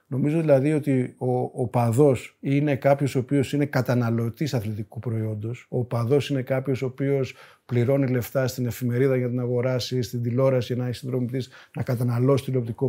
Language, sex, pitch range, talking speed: Greek, male, 125-150 Hz, 170 wpm